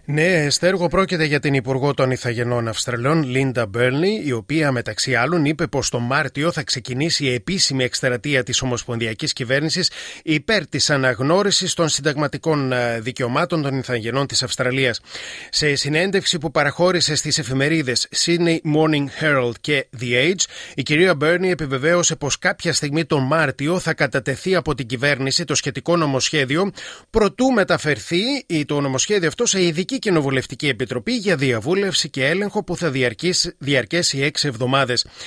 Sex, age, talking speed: male, 30-49, 145 wpm